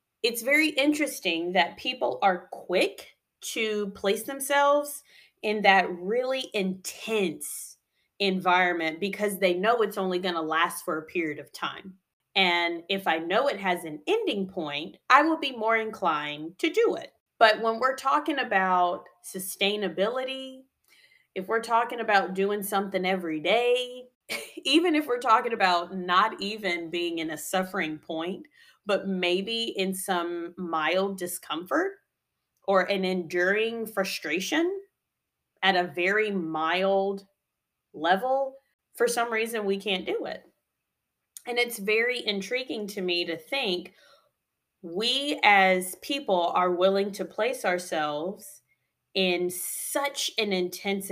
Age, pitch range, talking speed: 20-39, 180-240 Hz, 135 wpm